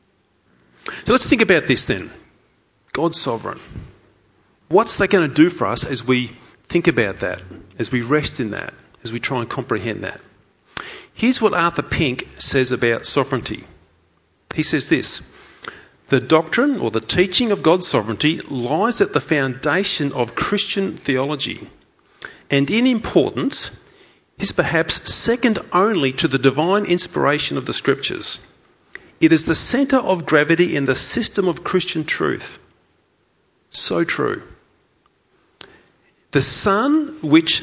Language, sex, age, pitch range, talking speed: English, male, 40-59, 130-190 Hz, 140 wpm